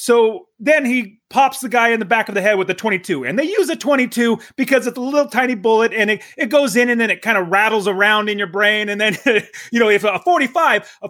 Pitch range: 175-235 Hz